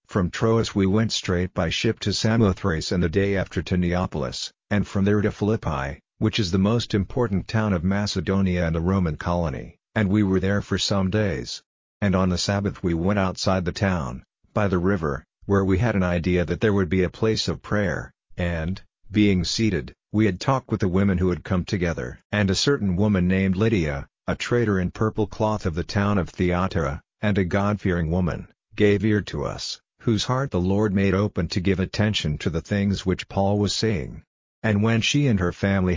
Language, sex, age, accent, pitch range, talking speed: English, male, 50-69, American, 90-105 Hz, 205 wpm